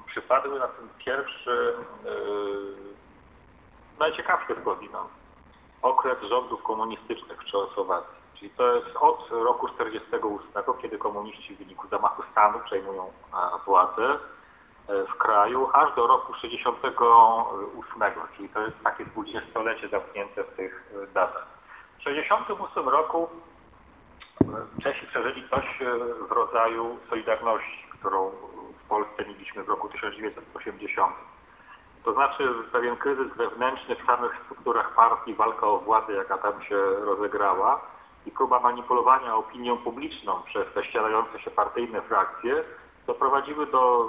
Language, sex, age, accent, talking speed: Polish, male, 40-59, native, 115 wpm